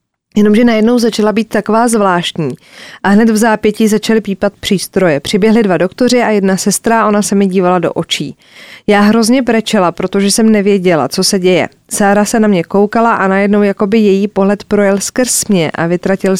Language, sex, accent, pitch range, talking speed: Czech, female, native, 190-220 Hz, 180 wpm